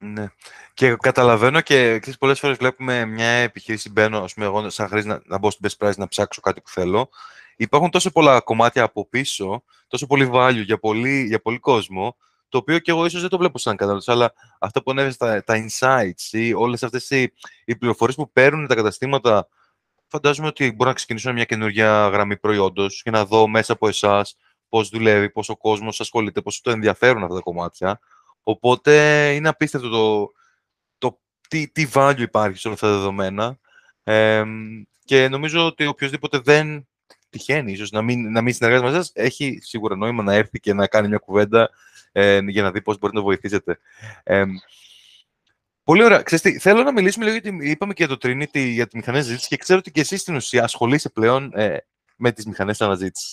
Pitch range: 110-145 Hz